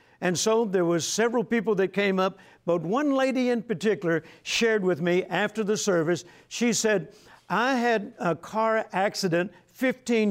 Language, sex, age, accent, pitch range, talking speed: English, male, 60-79, American, 180-225 Hz, 165 wpm